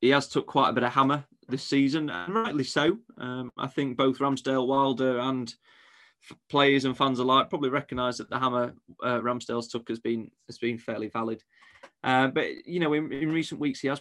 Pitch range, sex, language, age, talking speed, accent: 115-135 Hz, male, English, 20-39, 205 wpm, British